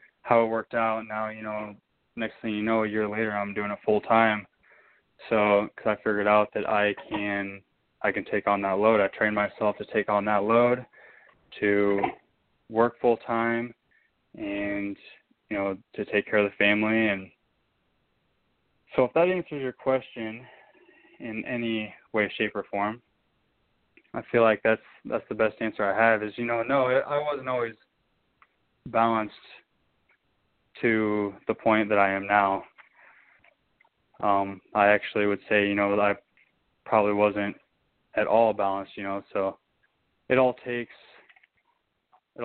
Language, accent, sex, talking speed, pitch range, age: English, American, male, 160 wpm, 105-115 Hz, 20-39